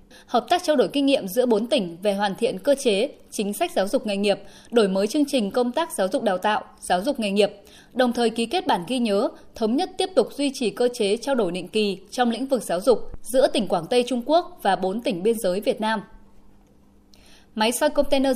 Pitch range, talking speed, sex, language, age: 205-265 Hz, 240 wpm, female, Vietnamese, 20-39